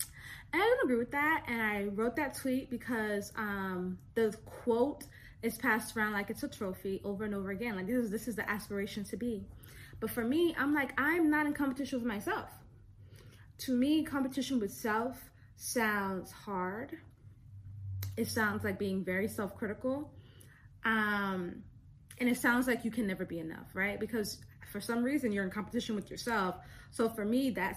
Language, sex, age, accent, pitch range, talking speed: English, female, 20-39, American, 190-240 Hz, 180 wpm